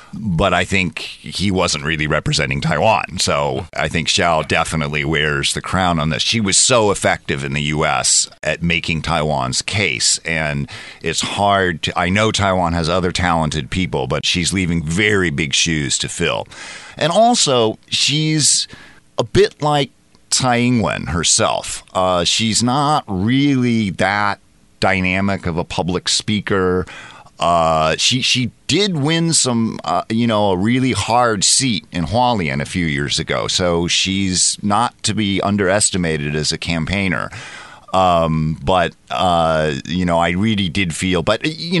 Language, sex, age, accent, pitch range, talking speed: English, male, 50-69, American, 80-110 Hz, 150 wpm